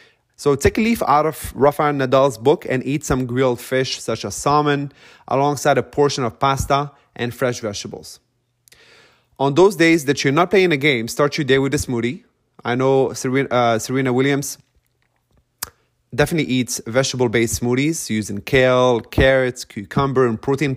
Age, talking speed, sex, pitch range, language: 30-49, 160 wpm, male, 115-145 Hz, English